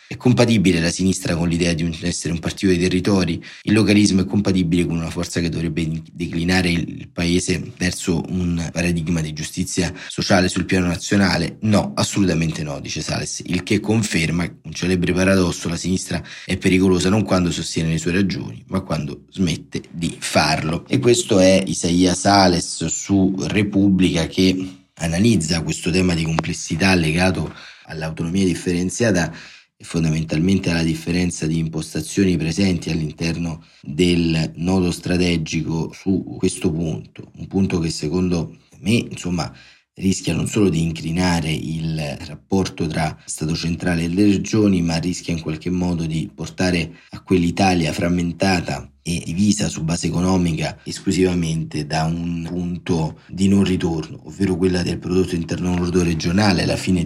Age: 30-49